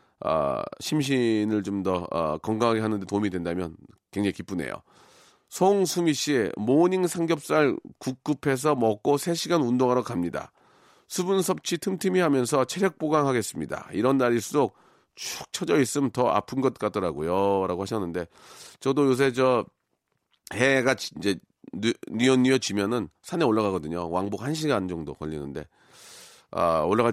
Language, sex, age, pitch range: Korean, male, 40-59, 115-195 Hz